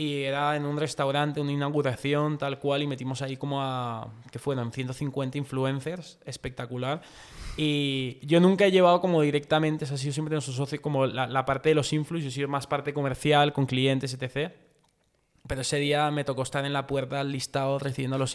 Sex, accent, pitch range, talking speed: male, Spanish, 135-155 Hz, 190 wpm